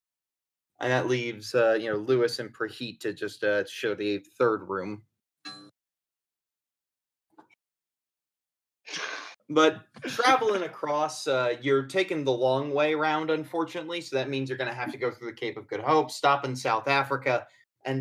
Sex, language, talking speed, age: male, English, 155 wpm, 30-49